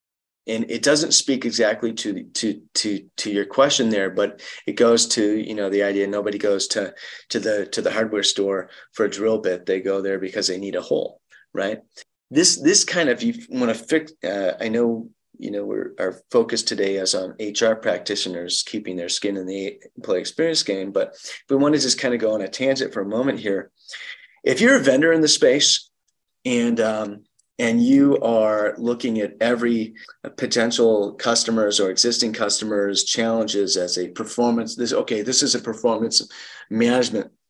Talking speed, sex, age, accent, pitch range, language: 190 wpm, male, 30-49, American, 100-120 Hz, English